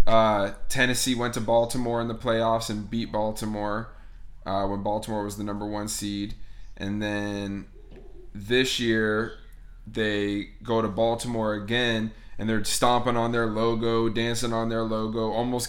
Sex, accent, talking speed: male, American, 150 wpm